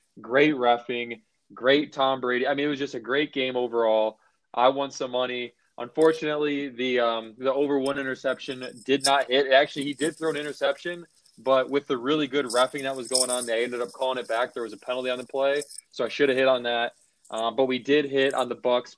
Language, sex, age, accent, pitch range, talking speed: English, male, 20-39, American, 125-150 Hz, 230 wpm